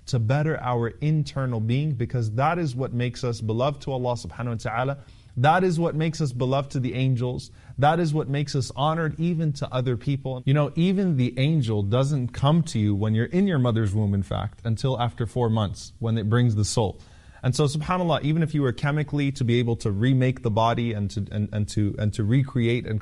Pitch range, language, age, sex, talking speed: 115-145 Hz, English, 20-39, male, 225 wpm